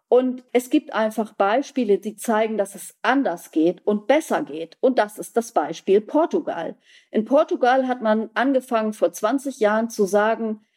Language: German